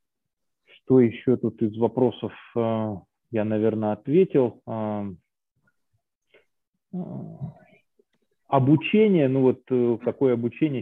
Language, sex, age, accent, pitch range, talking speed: Russian, male, 20-39, native, 115-155 Hz, 65 wpm